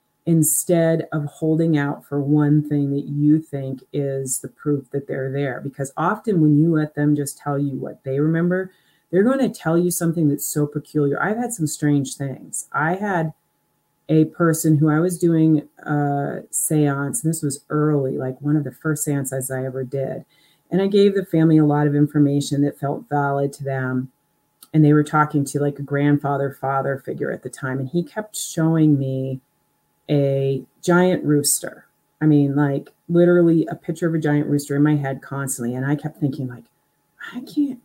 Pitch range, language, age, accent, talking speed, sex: 140-165 Hz, English, 40-59, American, 190 wpm, female